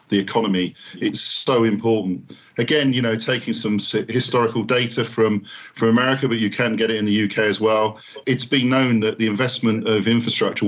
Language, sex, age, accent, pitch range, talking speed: English, male, 40-59, British, 110-125 Hz, 185 wpm